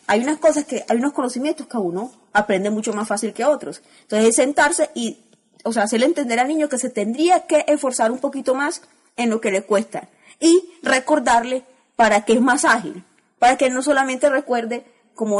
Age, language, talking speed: 30-49, Spanish, 195 wpm